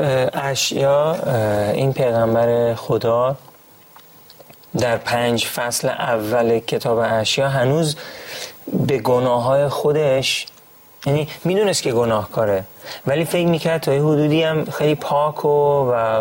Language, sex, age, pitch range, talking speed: Persian, male, 30-49, 115-145 Hz, 110 wpm